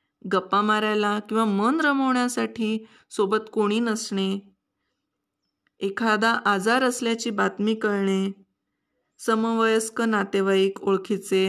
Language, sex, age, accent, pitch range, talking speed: Marathi, female, 20-39, native, 205-260 Hz, 85 wpm